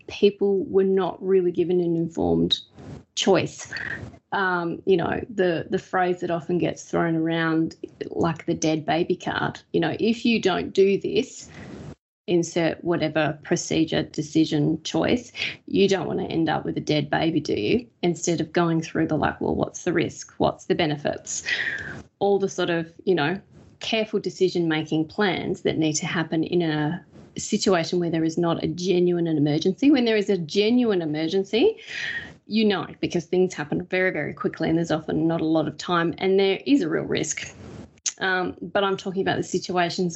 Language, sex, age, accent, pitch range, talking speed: English, female, 30-49, Australian, 170-200 Hz, 180 wpm